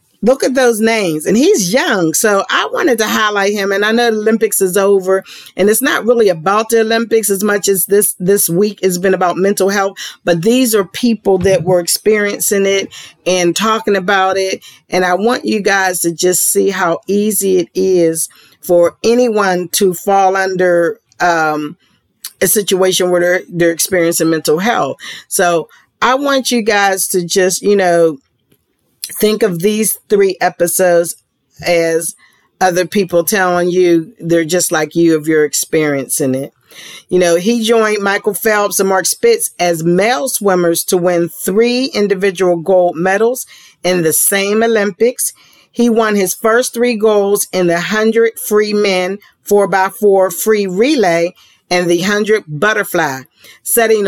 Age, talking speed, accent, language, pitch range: 40-59, 160 wpm, American, English, 175-215 Hz